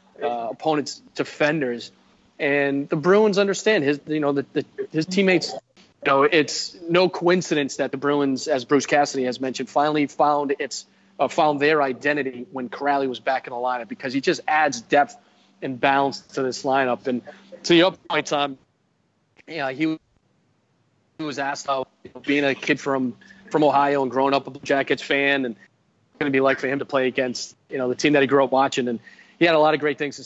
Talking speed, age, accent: 215 wpm, 30-49, American